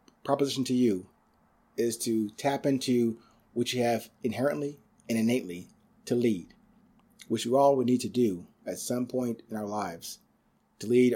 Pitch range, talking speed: 110-130 Hz, 160 wpm